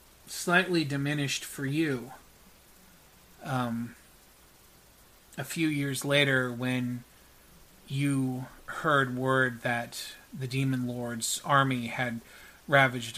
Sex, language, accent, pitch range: male, English, American, 115-130 Hz